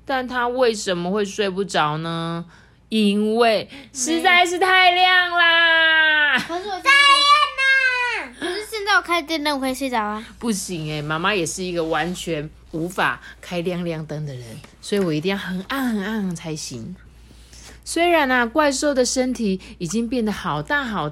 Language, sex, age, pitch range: Chinese, female, 30-49, 155-255 Hz